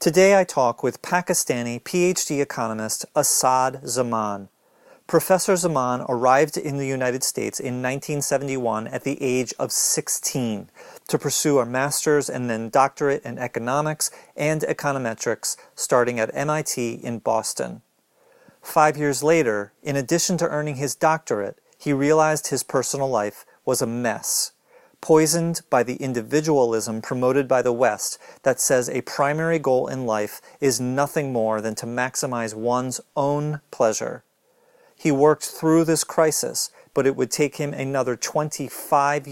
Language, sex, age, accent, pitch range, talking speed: English, male, 40-59, American, 125-150 Hz, 140 wpm